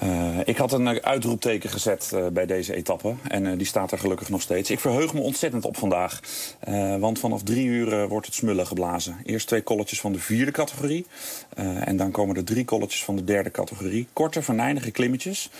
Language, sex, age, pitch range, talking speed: Dutch, male, 40-59, 100-130 Hz, 210 wpm